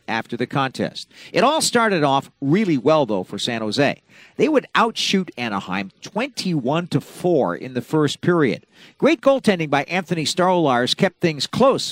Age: 50-69